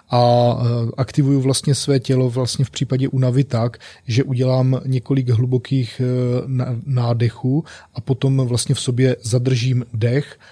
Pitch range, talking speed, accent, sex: 120-130 Hz, 125 wpm, native, male